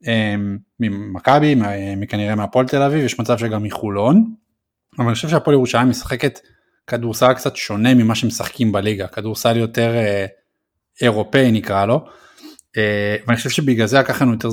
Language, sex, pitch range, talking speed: Hebrew, male, 110-140 Hz, 135 wpm